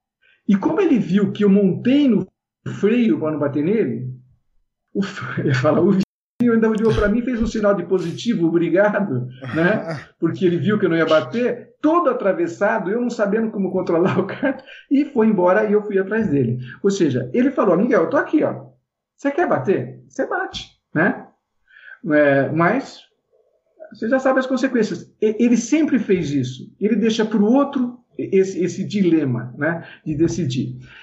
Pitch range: 160-225 Hz